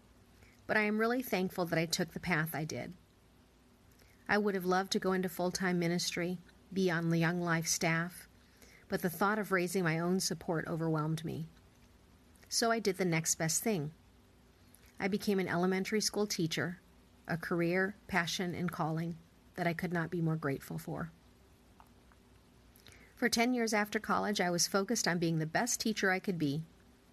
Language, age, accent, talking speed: English, 40-59, American, 175 wpm